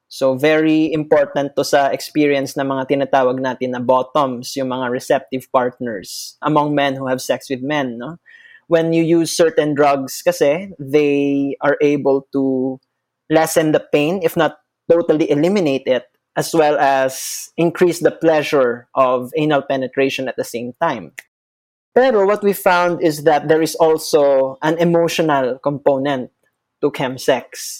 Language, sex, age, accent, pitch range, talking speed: Filipino, male, 20-39, native, 135-165 Hz, 145 wpm